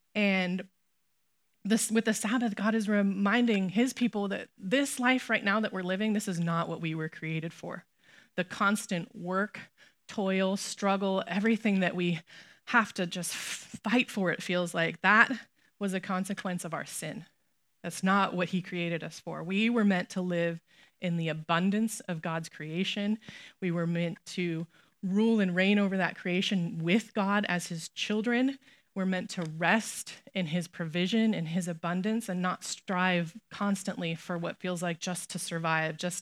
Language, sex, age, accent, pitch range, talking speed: English, female, 20-39, American, 175-215 Hz, 170 wpm